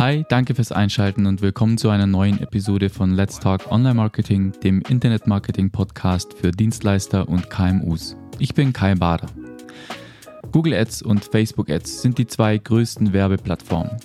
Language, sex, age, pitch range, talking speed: German, male, 20-39, 95-120 Hz, 145 wpm